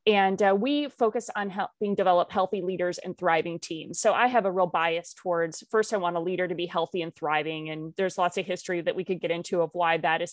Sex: female